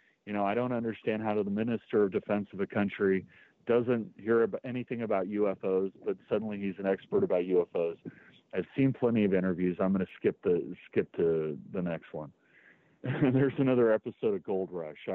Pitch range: 100-125 Hz